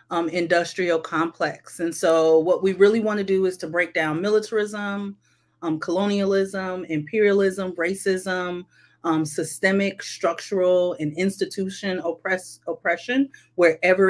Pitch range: 165-190 Hz